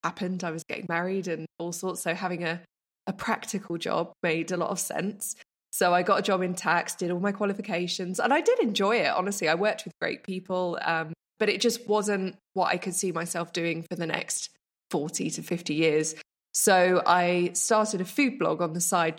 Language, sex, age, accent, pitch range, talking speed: English, female, 20-39, British, 165-200 Hz, 215 wpm